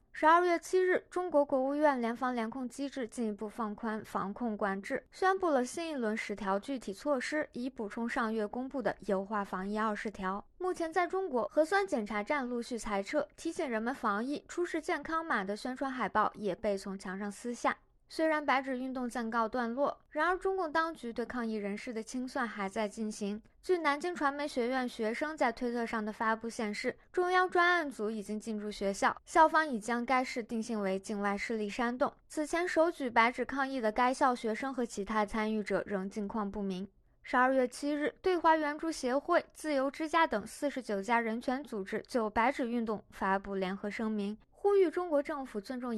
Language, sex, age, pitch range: Chinese, female, 20-39, 210-295 Hz